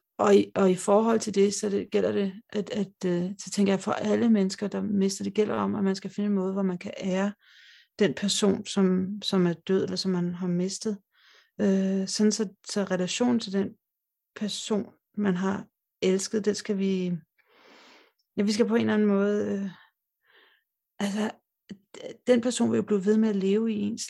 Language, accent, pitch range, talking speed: Danish, native, 195-215 Hz, 200 wpm